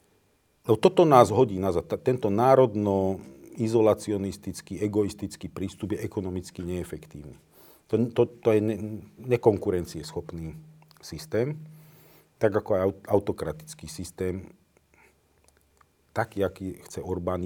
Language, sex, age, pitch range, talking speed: Slovak, male, 40-59, 90-120 Hz, 95 wpm